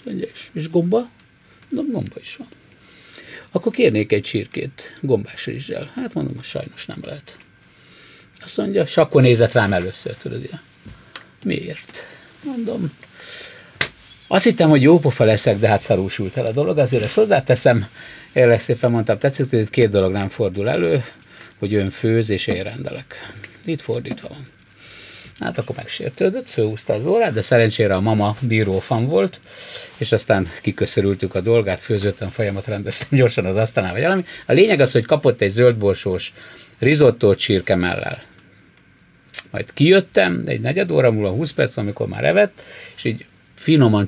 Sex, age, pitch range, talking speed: male, 50-69, 100-145 Hz, 150 wpm